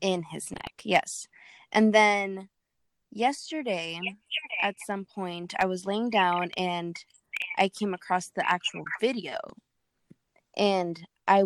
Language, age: English, 20-39